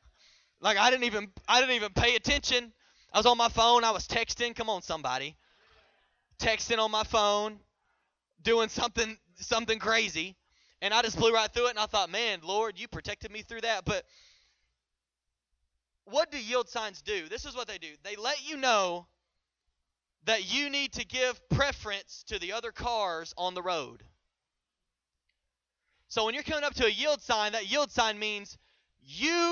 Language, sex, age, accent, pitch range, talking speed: English, male, 20-39, American, 165-245 Hz, 175 wpm